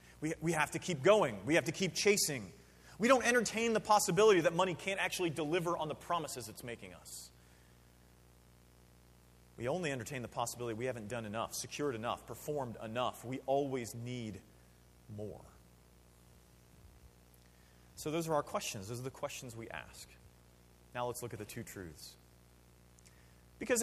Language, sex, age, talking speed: English, male, 30-49, 160 wpm